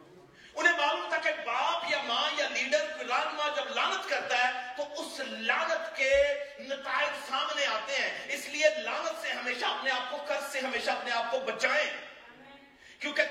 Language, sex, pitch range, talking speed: Urdu, male, 275-320 Hz, 180 wpm